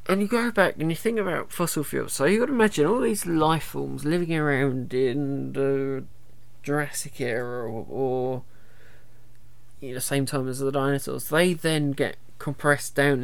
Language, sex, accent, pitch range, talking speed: English, male, British, 120-155 Hz, 175 wpm